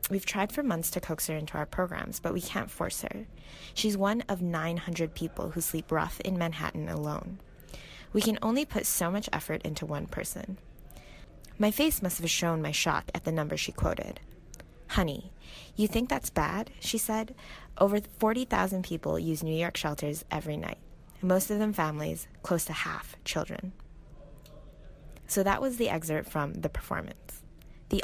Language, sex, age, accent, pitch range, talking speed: English, female, 20-39, American, 155-200 Hz, 175 wpm